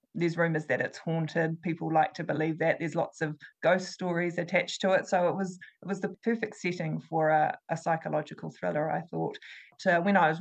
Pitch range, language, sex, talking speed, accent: 160-190 Hz, English, female, 215 wpm, Australian